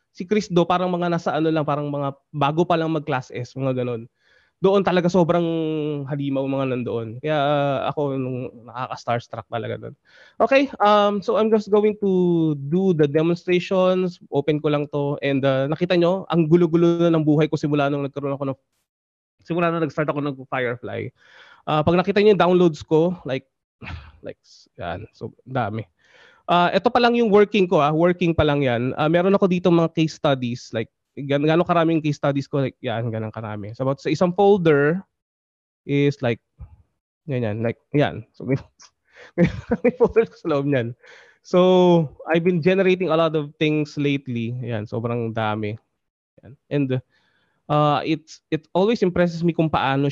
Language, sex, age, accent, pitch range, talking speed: English, male, 20-39, Filipino, 130-175 Hz, 175 wpm